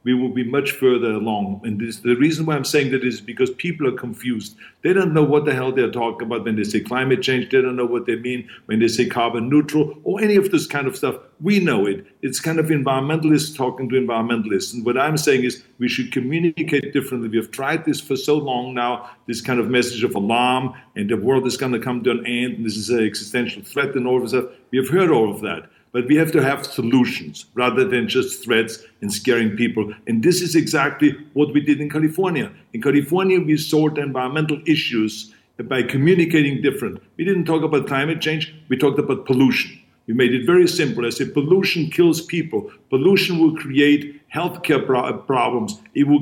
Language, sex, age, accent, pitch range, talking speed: English, male, 50-69, German, 125-155 Hz, 220 wpm